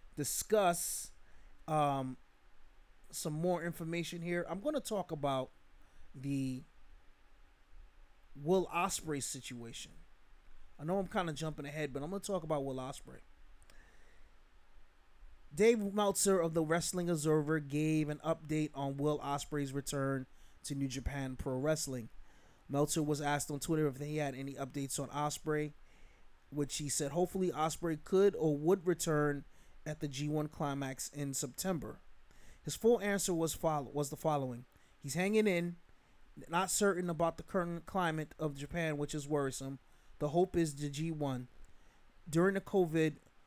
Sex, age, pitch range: male, 30-49, 140-170 Hz